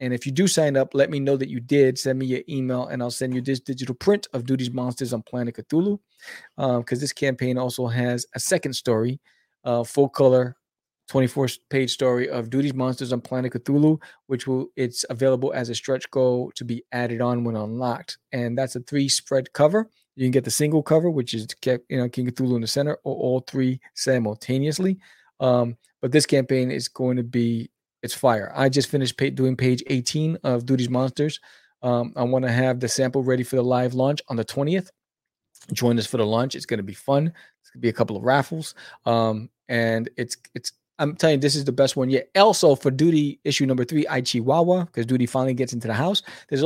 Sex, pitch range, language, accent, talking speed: male, 125-140 Hz, English, American, 215 wpm